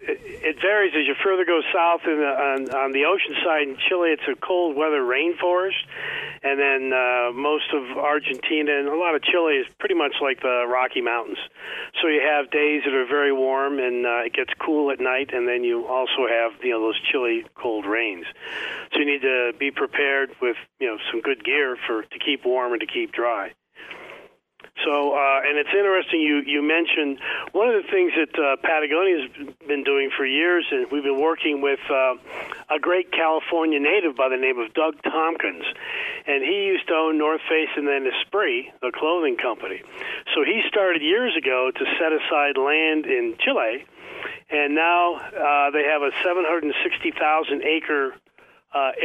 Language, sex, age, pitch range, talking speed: English, male, 40-59, 140-210 Hz, 195 wpm